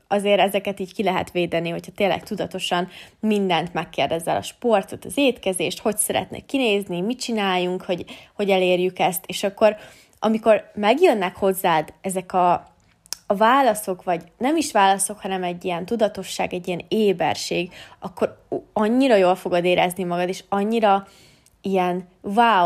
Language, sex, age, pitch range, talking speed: Hungarian, female, 20-39, 180-215 Hz, 145 wpm